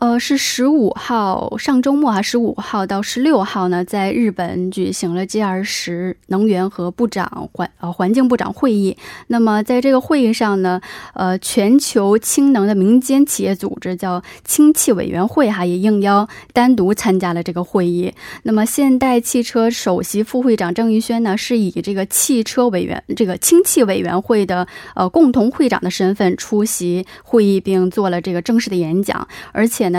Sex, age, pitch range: female, 20-39, 185-245 Hz